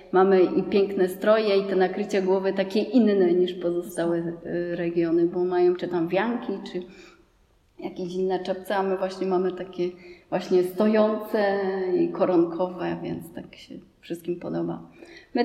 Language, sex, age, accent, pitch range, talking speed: Polish, female, 30-49, native, 185-210 Hz, 145 wpm